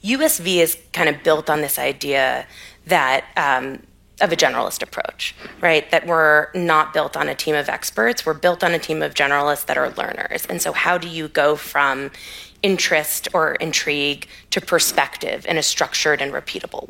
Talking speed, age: 180 wpm, 20-39